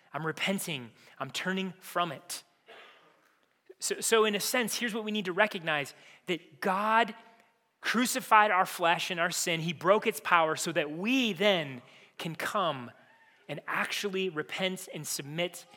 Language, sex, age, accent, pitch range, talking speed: English, male, 30-49, American, 165-215 Hz, 150 wpm